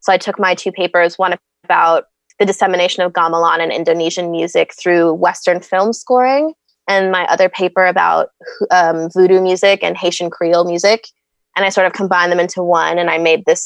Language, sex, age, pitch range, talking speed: English, female, 20-39, 170-195 Hz, 190 wpm